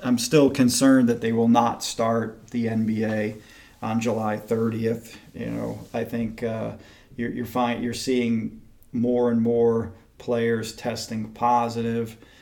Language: English